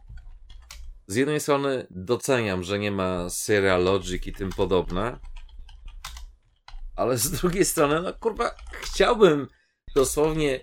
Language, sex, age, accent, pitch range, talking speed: Polish, male, 40-59, native, 80-115 Hz, 115 wpm